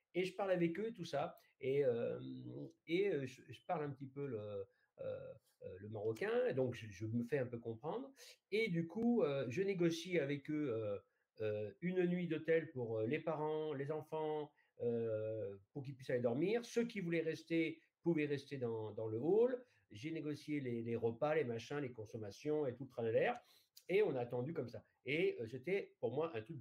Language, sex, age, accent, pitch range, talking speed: French, male, 50-69, French, 130-190 Hz, 185 wpm